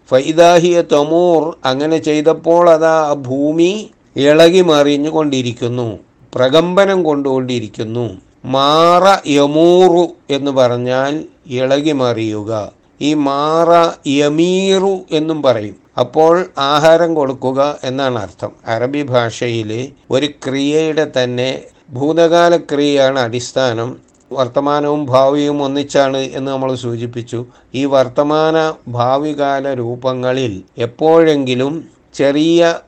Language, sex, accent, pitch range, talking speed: Malayalam, male, native, 125-155 Hz, 75 wpm